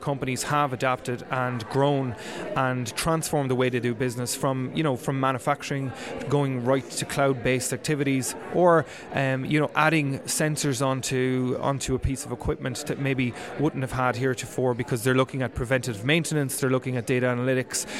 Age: 30-49